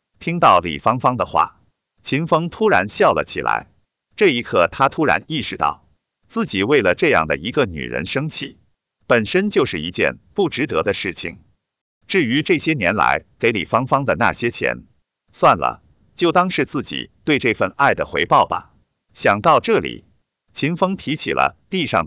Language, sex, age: Chinese, male, 50-69